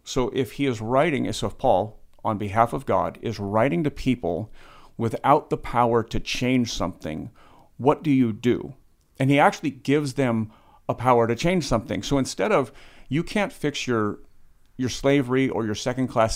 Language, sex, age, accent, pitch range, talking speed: English, male, 40-59, American, 110-135 Hz, 175 wpm